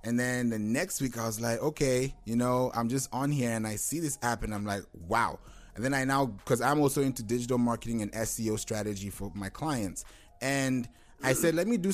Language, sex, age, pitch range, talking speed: English, male, 20-39, 110-135 Hz, 230 wpm